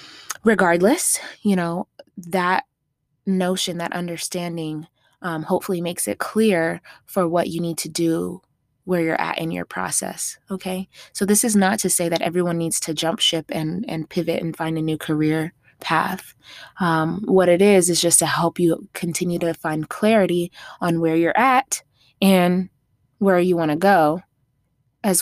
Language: English